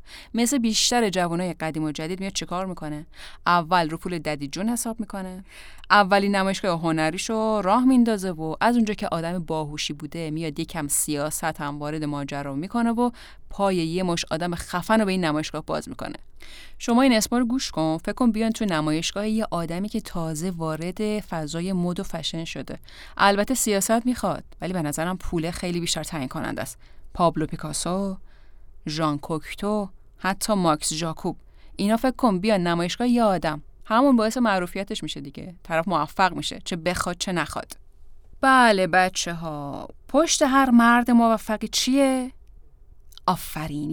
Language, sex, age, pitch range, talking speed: Persian, female, 30-49, 160-220 Hz, 155 wpm